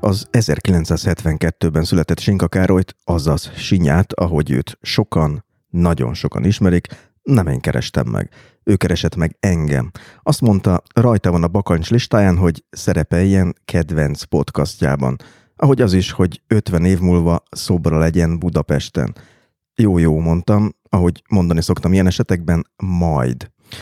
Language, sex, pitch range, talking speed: Hungarian, male, 80-105 Hz, 125 wpm